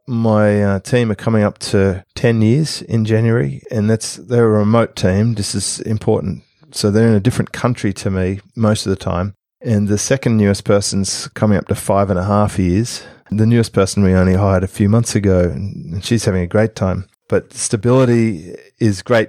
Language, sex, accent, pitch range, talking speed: English, male, Australian, 100-115 Hz, 200 wpm